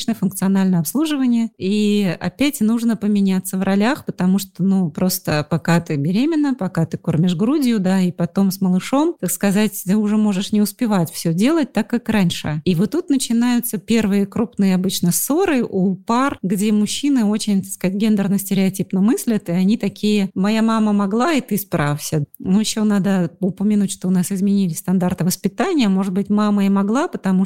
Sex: female